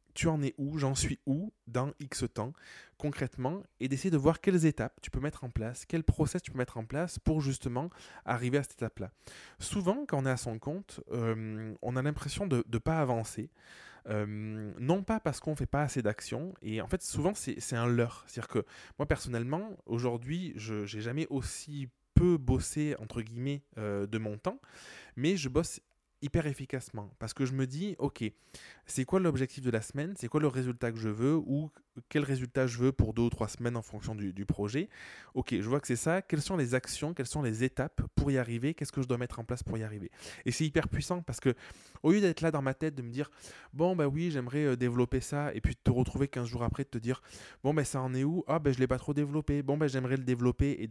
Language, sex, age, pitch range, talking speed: French, male, 20-39, 115-150 Hz, 250 wpm